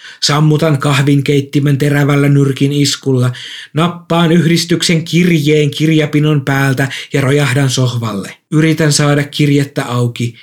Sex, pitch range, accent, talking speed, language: male, 135-155 Hz, native, 100 wpm, Finnish